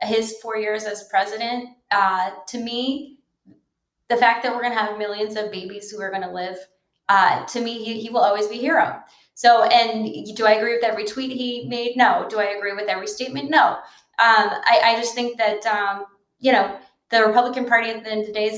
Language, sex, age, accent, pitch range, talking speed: English, female, 20-39, American, 205-245 Hz, 220 wpm